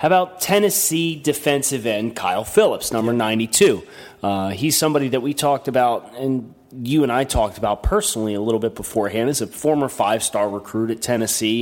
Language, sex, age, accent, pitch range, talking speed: English, male, 30-49, American, 110-135 Hz, 175 wpm